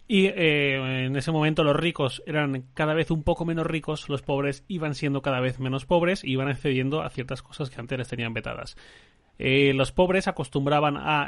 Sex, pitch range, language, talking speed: male, 130-155 Hz, Spanish, 210 wpm